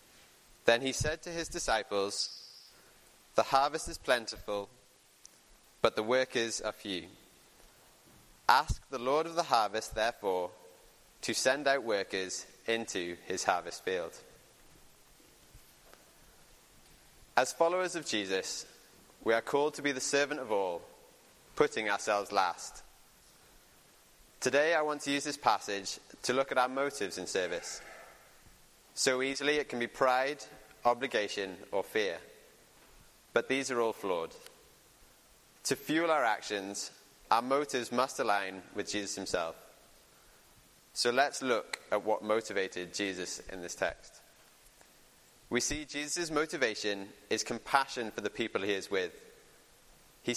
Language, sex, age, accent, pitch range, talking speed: English, male, 20-39, British, 110-155 Hz, 130 wpm